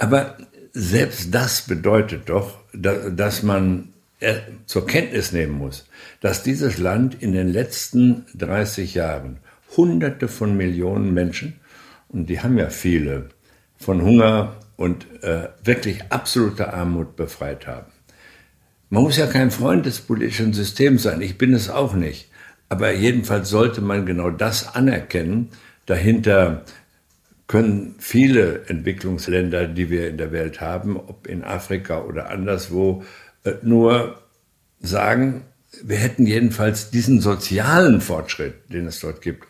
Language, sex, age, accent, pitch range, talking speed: German, male, 60-79, German, 90-115 Hz, 130 wpm